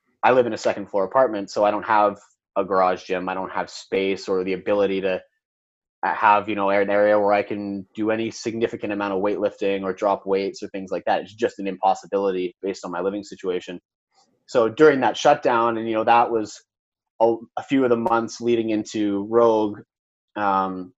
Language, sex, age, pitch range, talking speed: Danish, male, 30-49, 100-120 Hz, 205 wpm